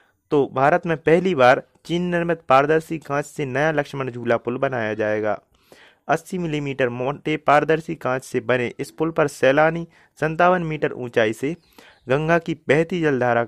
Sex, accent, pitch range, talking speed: male, native, 120-160 Hz, 160 wpm